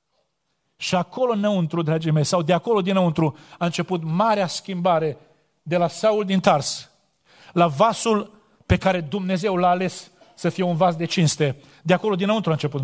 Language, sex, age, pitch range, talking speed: Romanian, male, 40-59, 165-205 Hz, 170 wpm